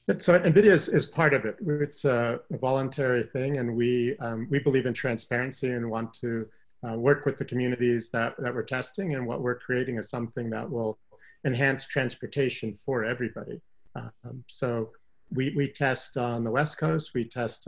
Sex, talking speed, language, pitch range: male, 185 wpm, English, 115-130 Hz